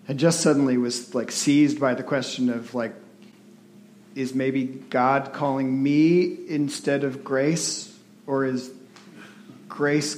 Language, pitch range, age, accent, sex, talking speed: English, 145-205 Hz, 40-59, American, male, 130 wpm